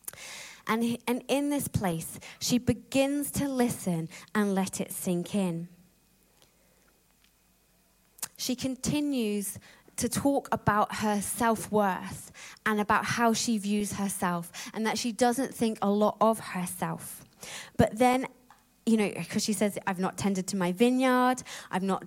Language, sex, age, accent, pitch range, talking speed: English, female, 20-39, British, 180-220 Hz, 135 wpm